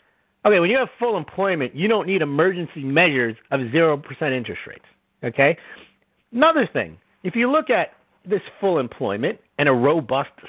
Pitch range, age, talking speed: 150-240 Hz, 50-69, 160 wpm